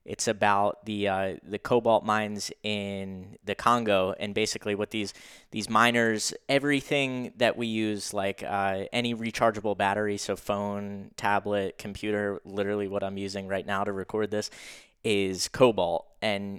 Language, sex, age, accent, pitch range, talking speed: English, male, 10-29, American, 100-115 Hz, 150 wpm